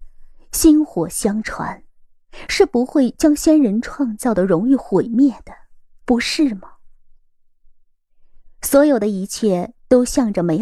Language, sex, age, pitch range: Chinese, female, 20-39, 200-280 Hz